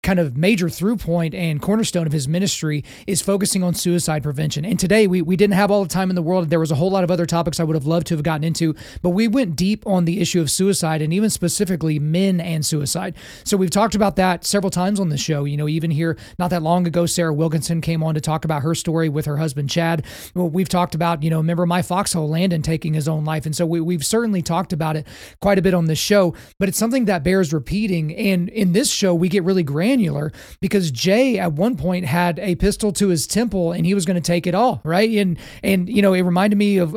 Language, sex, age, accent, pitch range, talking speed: English, male, 30-49, American, 160-195 Hz, 260 wpm